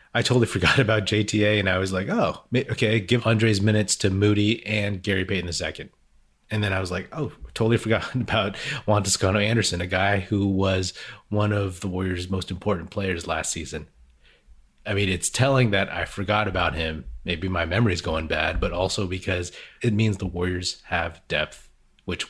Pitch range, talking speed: 85-110 Hz, 190 wpm